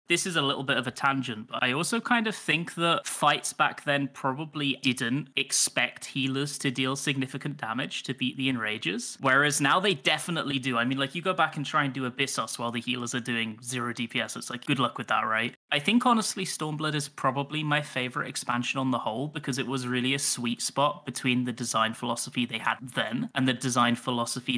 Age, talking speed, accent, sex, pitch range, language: 10-29, 220 wpm, British, male, 120-140 Hz, English